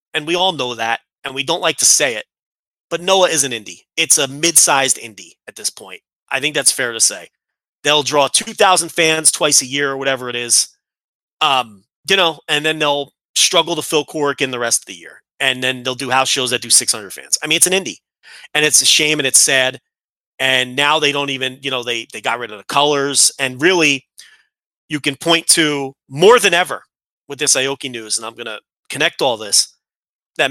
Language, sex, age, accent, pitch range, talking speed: English, male, 30-49, American, 120-150 Hz, 230 wpm